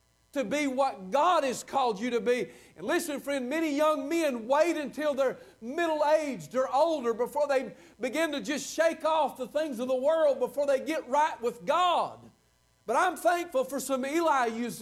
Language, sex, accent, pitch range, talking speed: English, male, American, 215-290 Hz, 180 wpm